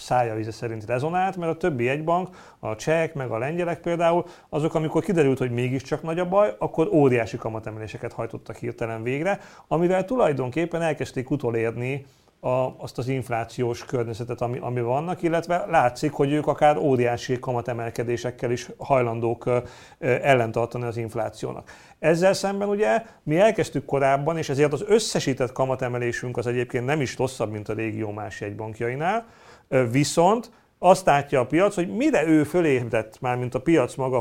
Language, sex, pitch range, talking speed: Hungarian, male, 125-170 Hz, 150 wpm